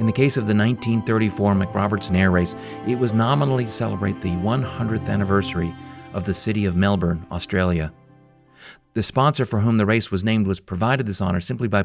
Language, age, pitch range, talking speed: English, 40-59, 90-115 Hz, 185 wpm